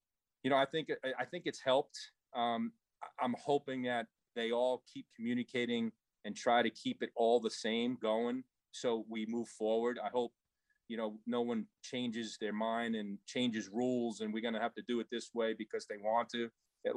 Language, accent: English, American